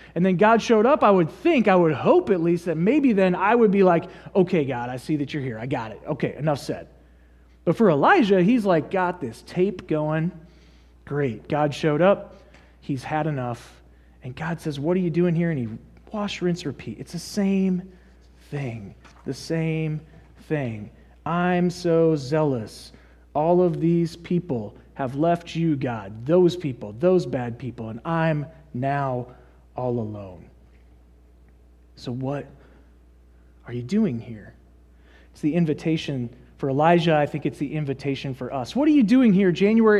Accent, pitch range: American, 115-180 Hz